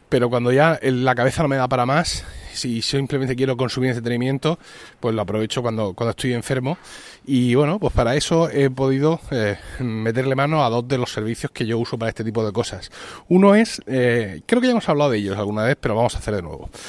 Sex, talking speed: male, 225 wpm